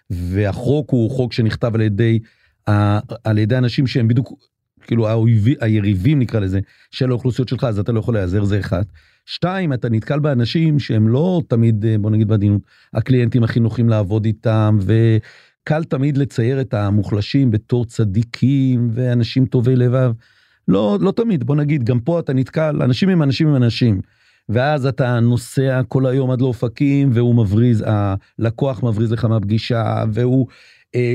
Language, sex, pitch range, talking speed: Hebrew, male, 110-140 Hz, 150 wpm